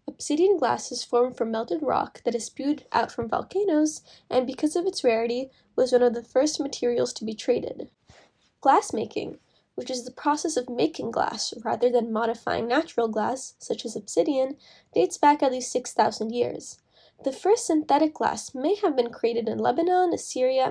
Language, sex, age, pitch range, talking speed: English, female, 10-29, 235-320 Hz, 175 wpm